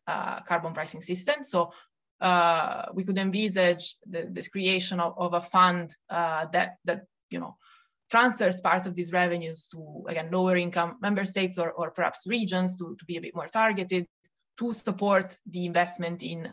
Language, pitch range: English, 170-200 Hz